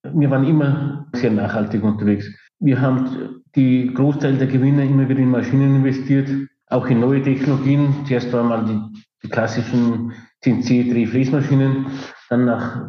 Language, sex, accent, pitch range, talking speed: German, male, Austrian, 120-130 Hz, 145 wpm